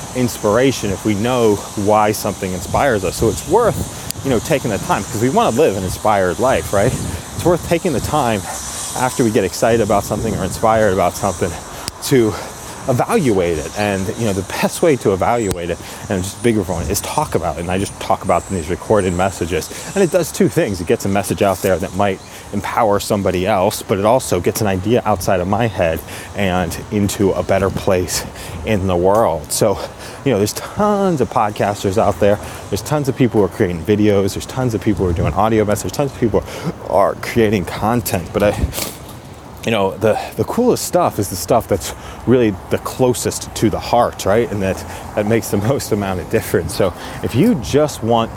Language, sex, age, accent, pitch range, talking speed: English, male, 30-49, American, 95-115 Hz, 210 wpm